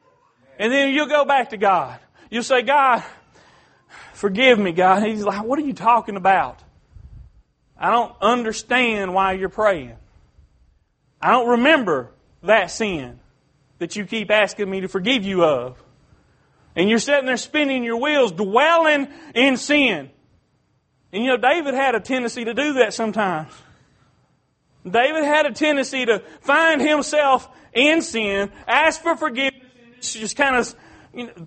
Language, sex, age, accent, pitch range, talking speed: English, male, 40-59, American, 190-280 Hz, 145 wpm